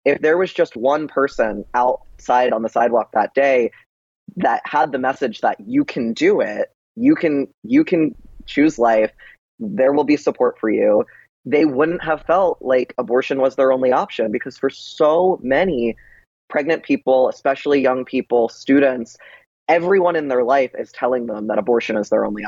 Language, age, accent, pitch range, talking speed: English, 20-39, American, 120-165 Hz, 175 wpm